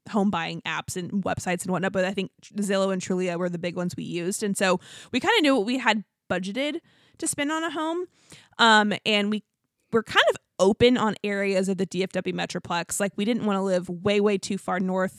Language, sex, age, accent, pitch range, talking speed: English, female, 20-39, American, 185-215 Hz, 230 wpm